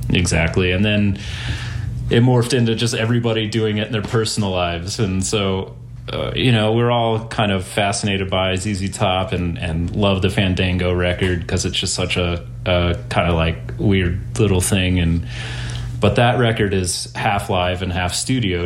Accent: American